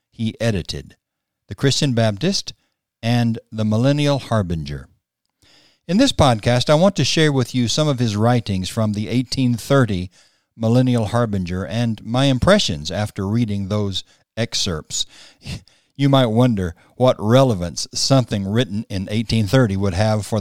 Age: 60-79